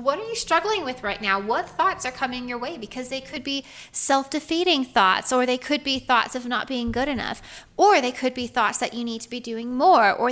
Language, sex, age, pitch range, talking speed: English, female, 20-39, 230-275 Hz, 245 wpm